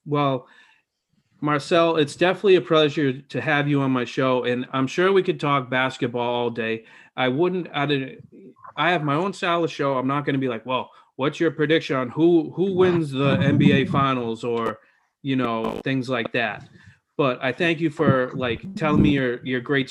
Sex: male